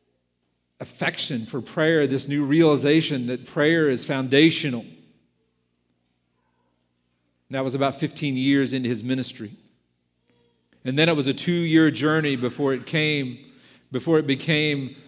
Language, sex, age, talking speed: English, male, 40-59, 125 wpm